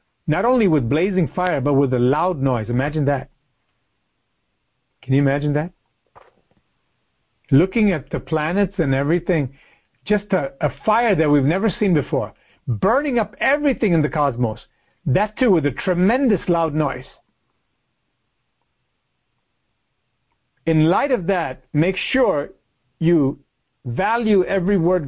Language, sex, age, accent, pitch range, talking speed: English, male, 60-79, American, 115-165 Hz, 130 wpm